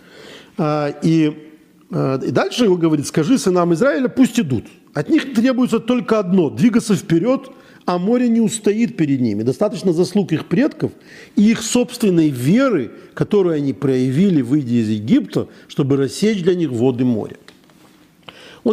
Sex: male